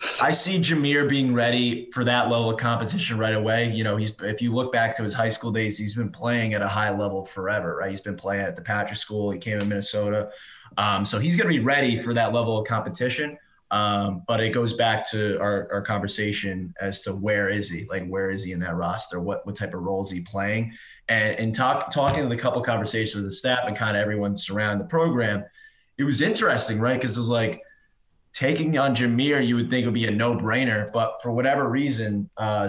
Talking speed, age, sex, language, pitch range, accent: 235 wpm, 20-39, male, English, 100-120 Hz, American